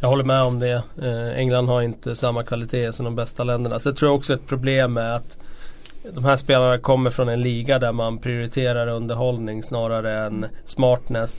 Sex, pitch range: male, 115-130 Hz